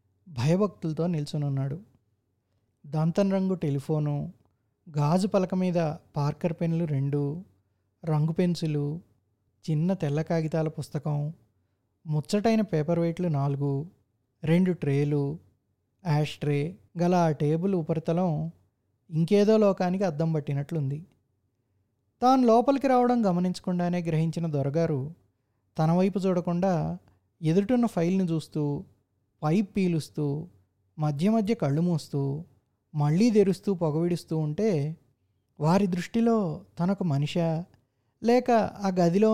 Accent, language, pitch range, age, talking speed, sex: native, Telugu, 135-185 Hz, 20-39, 95 wpm, male